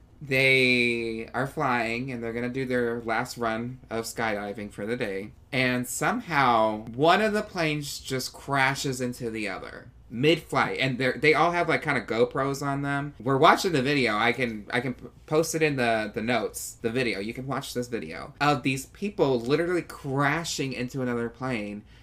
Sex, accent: male, American